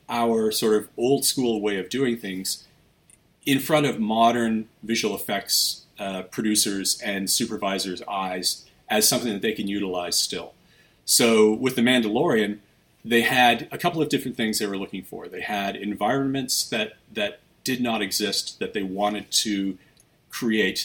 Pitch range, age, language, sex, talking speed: 95-115 Hz, 40-59, English, male, 160 wpm